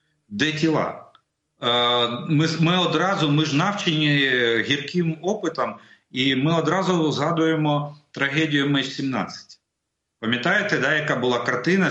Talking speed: 105 wpm